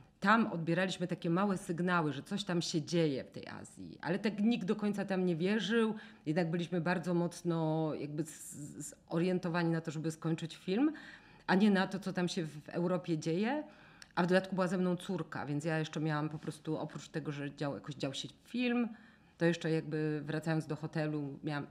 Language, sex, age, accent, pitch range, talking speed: Polish, female, 40-59, native, 160-190 Hz, 190 wpm